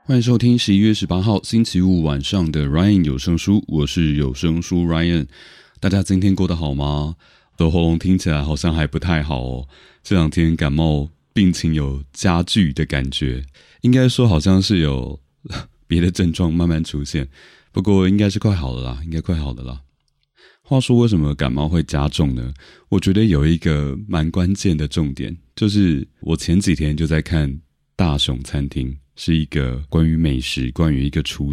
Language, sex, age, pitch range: Chinese, male, 30-49, 75-95 Hz